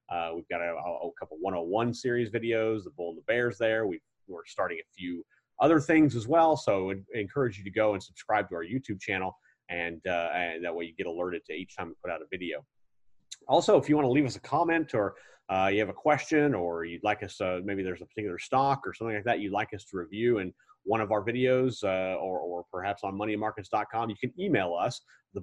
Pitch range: 95-135 Hz